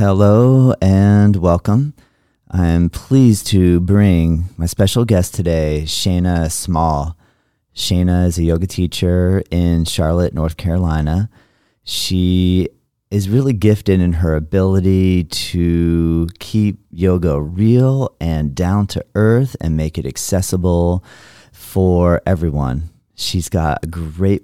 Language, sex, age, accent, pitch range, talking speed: English, male, 30-49, American, 80-100 Hz, 120 wpm